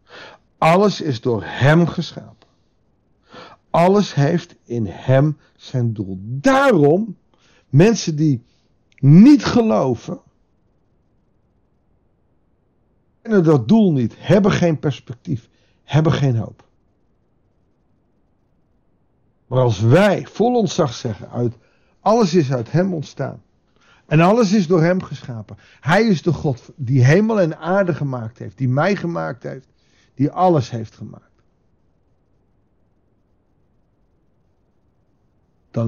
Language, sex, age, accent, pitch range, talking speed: Dutch, male, 50-69, Dutch, 115-170 Hz, 105 wpm